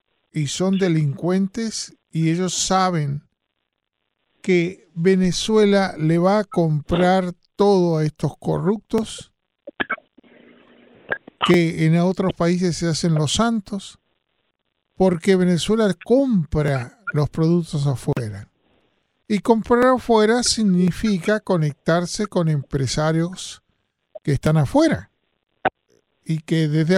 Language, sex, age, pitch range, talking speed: Spanish, male, 40-59, 150-195 Hz, 95 wpm